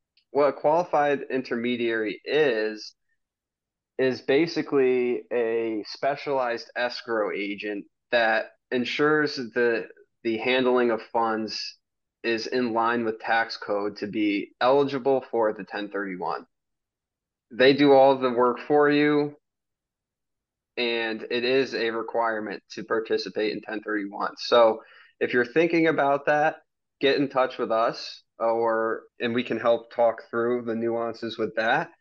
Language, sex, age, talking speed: English, male, 20-39, 130 wpm